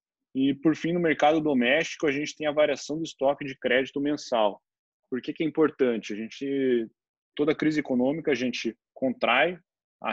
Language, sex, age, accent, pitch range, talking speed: Portuguese, male, 20-39, Brazilian, 120-150 Hz, 165 wpm